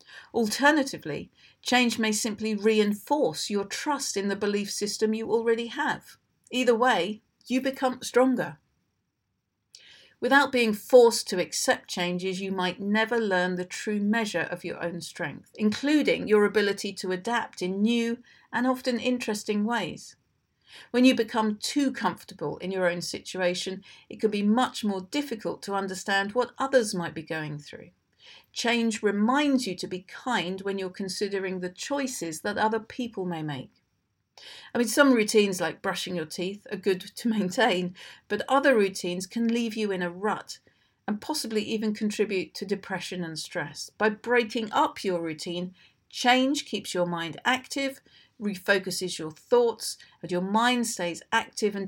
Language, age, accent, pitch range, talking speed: English, 50-69, British, 185-240 Hz, 155 wpm